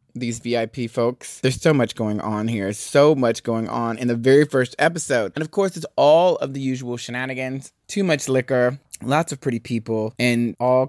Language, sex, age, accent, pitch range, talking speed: English, male, 30-49, American, 105-130 Hz, 200 wpm